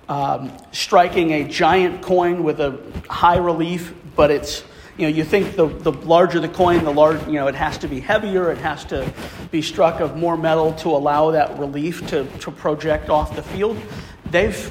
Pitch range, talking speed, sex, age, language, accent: 150-170 Hz, 195 wpm, male, 40-59, English, American